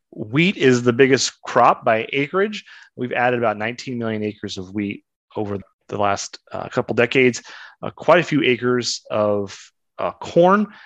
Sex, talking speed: male, 160 wpm